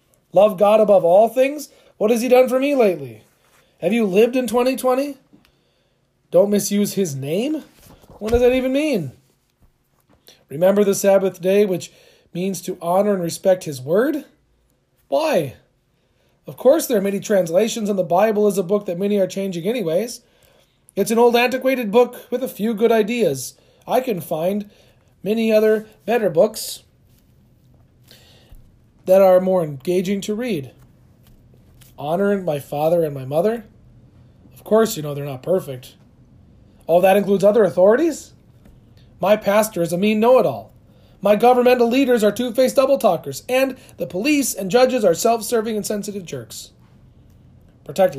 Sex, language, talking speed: male, English, 150 wpm